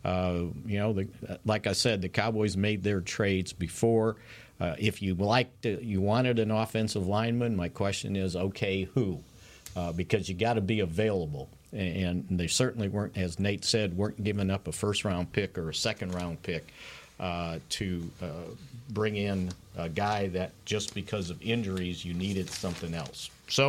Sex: male